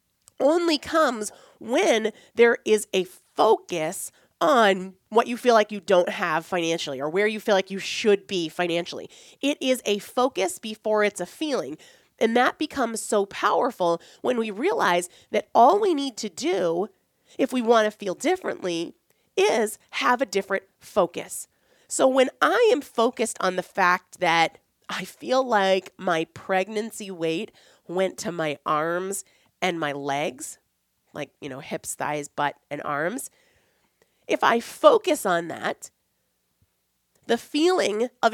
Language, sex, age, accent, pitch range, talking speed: English, female, 30-49, American, 175-245 Hz, 150 wpm